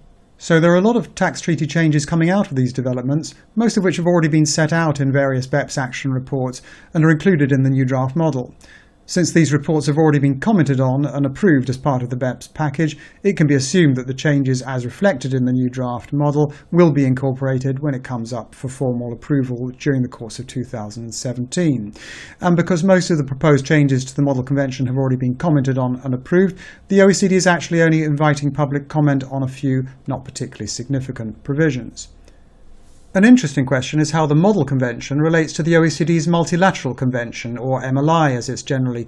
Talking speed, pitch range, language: 205 wpm, 130-160 Hz, English